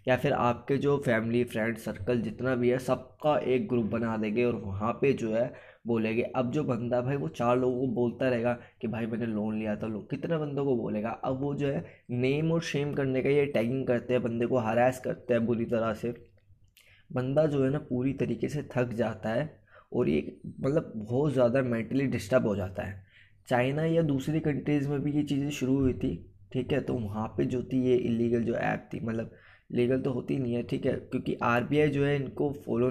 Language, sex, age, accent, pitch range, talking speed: Hindi, male, 20-39, native, 115-135 Hz, 220 wpm